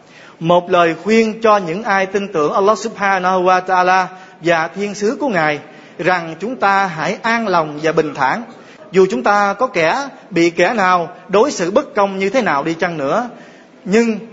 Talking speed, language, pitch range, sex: 190 wpm, Vietnamese, 180-220 Hz, male